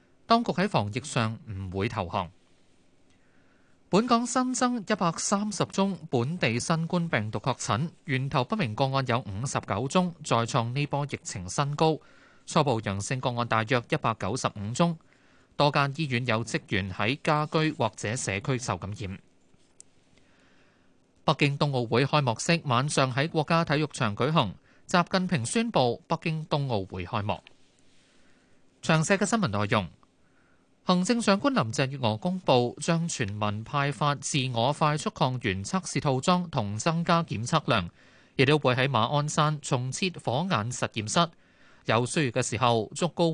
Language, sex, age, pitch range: Chinese, male, 20-39, 115-160 Hz